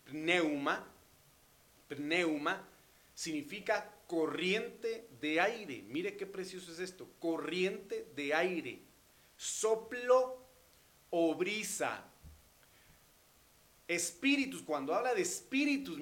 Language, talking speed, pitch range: Spanish, 80 wpm, 155-220 Hz